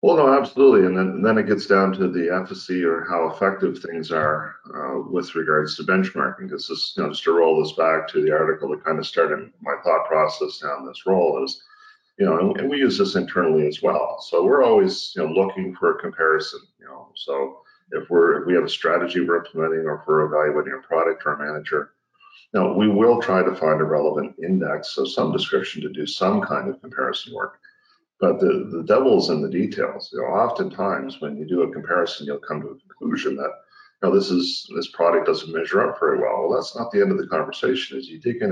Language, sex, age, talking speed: English, male, 50-69, 235 wpm